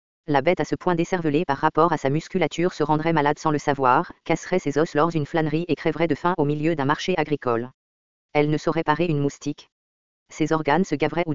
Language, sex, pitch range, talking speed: English, female, 145-165 Hz, 225 wpm